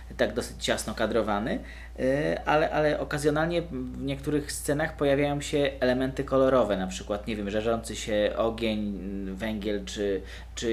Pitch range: 110-145 Hz